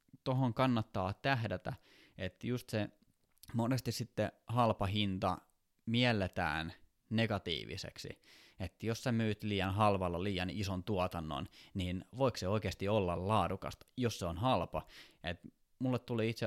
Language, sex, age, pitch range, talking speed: Finnish, male, 20-39, 90-110 Hz, 130 wpm